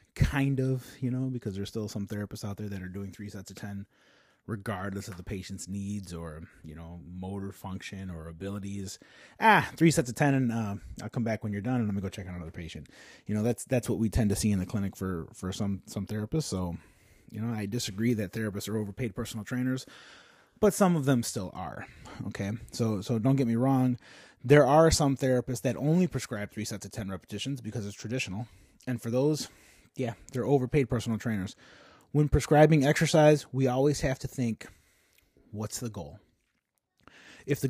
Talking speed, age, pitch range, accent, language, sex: 205 wpm, 30-49, 100-140 Hz, American, English, male